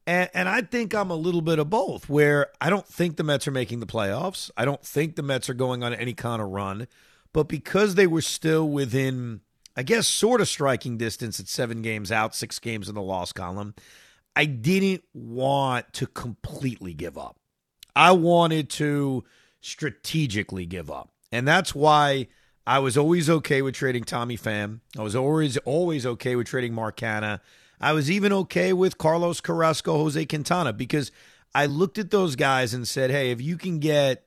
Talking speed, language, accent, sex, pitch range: 190 wpm, English, American, male, 120-160 Hz